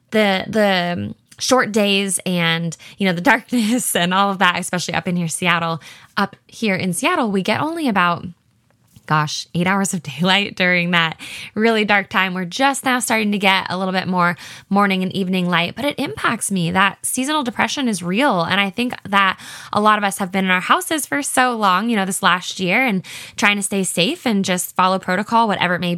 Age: 10-29